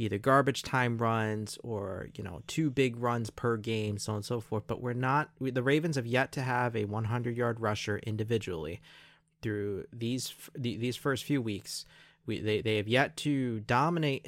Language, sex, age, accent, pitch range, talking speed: English, male, 20-39, American, 110-130 Hz, 190 wpm